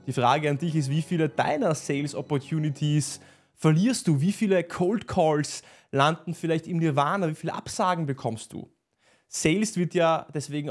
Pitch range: 135-175 Hz